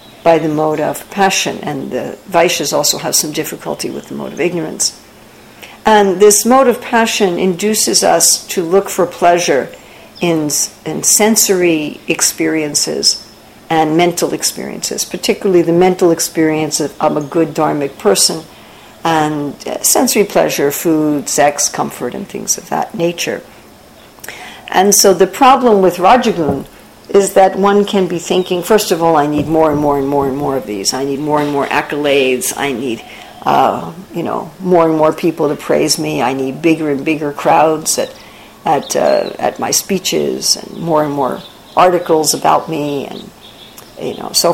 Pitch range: 150-195 Hz